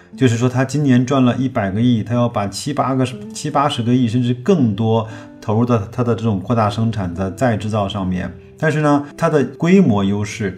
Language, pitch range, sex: Chinese, 100-125 Hz, male